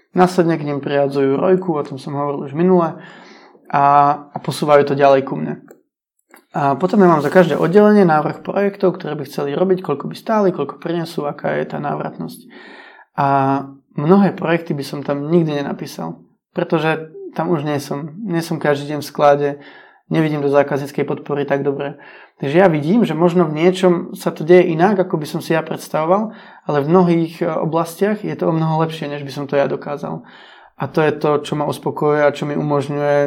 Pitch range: 145-175 Hz